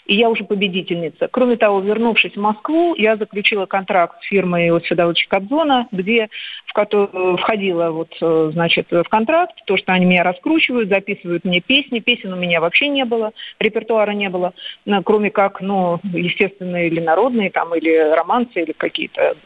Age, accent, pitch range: 40-59, native, 185-235 Hz